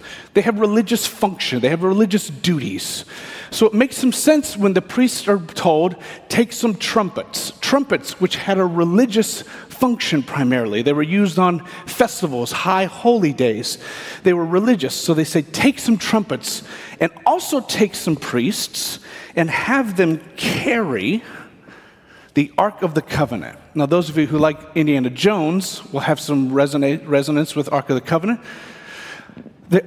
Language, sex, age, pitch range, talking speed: English, male, 40-59, 155-215 Hz, 155 wpm